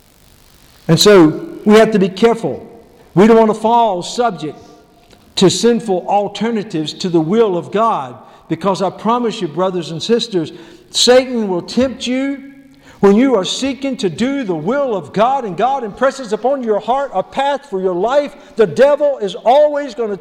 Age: 50-69